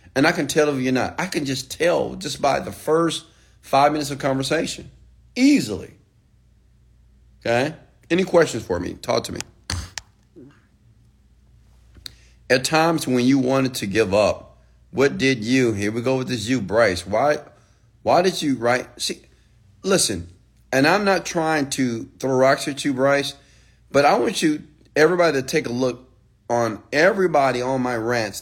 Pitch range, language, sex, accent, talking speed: 115-175 Hz, English, male, American, 165 wpm